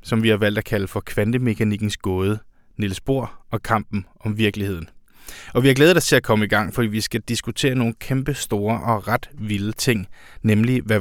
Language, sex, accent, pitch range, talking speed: Danish, male, native, 110-130 Hz, 205 wpm